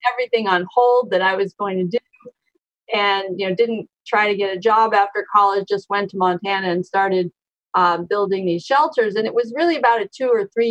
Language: English